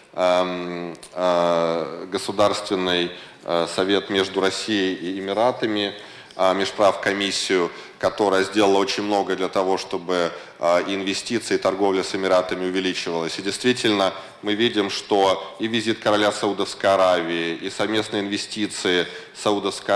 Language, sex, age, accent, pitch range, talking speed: Russian, male, 20-39, native, 95-105 Hz, 100 wpm